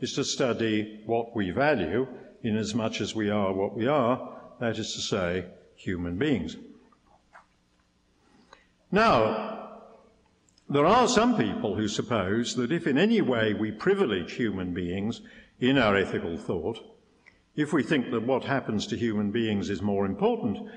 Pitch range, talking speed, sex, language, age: 105-150 Hz, 155 wpm, male, English, 50-69